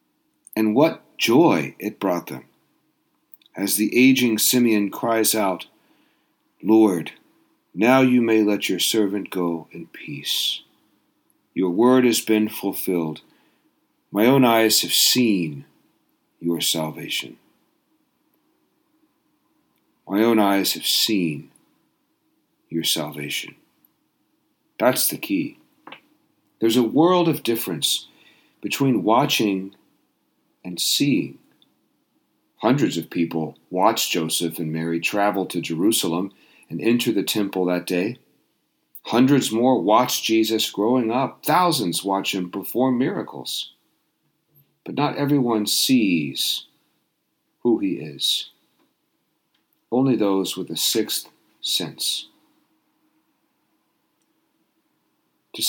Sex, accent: male, American